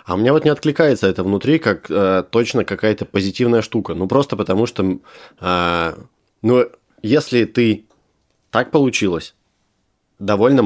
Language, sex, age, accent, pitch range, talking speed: Russian, male, 20-39, native, 90-110 Hz, 140 wpm